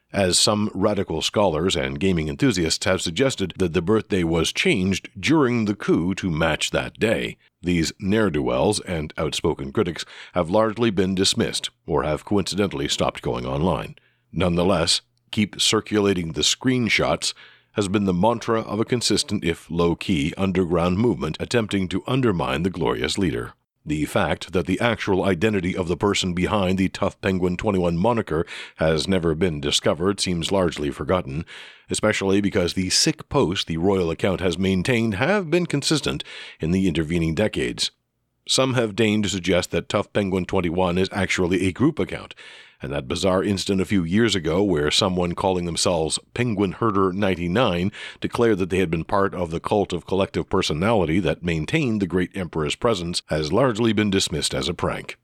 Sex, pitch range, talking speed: male, 90-110 Hz, 165 wpm